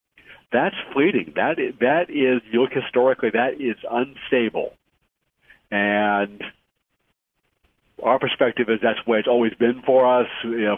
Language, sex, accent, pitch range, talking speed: English, male, American, 105-125 Hz, 140 wpm